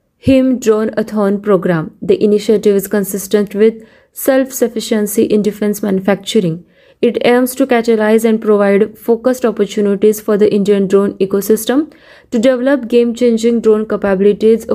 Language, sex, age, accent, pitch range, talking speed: Marathi, female, 20-39, native, 200-240 Hz, 135 wpm